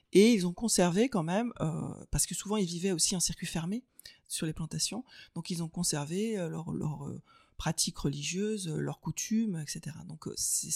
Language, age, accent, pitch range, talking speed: French, 30-49, French, 155-195 Hz, 185 wpm